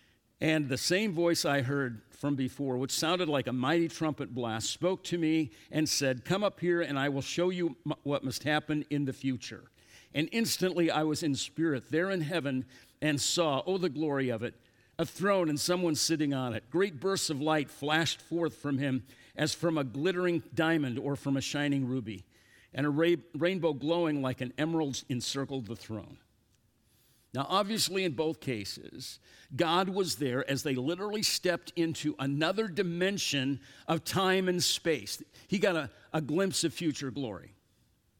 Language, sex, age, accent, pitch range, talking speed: English, male, 50-69, American, 120-165 Hz, 175 wpm